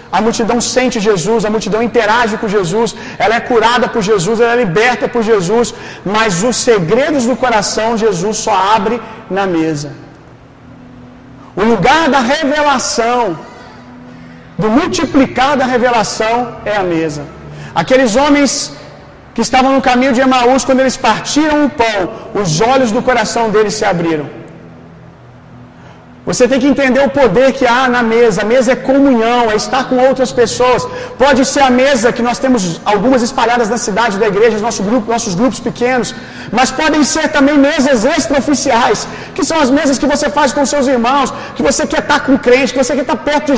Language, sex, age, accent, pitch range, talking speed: Gujarati, male, 40-59, Brazilian, 220-275 Hz, 170 wpm